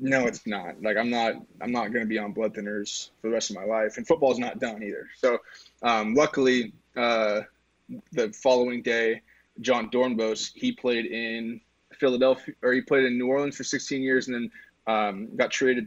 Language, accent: English, American